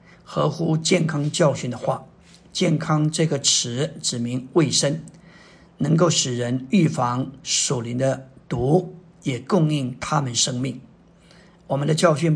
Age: 50-69